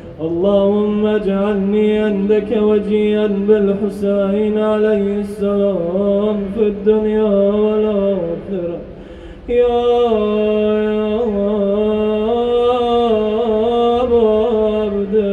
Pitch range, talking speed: 200-215 Hz, 55 wpm